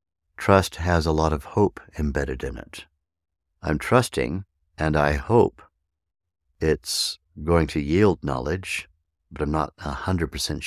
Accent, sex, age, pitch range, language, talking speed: American, male, 60-79, 75-85 Hz, English, 130 wpm